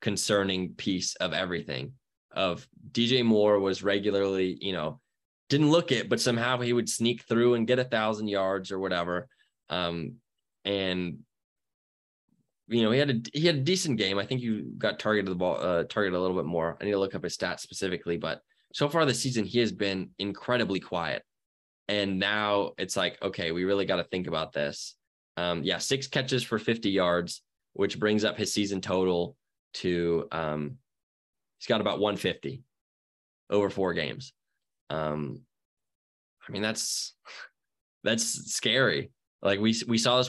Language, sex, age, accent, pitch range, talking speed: English, male, 20-39, American, 90-115 Hz, 175 wpm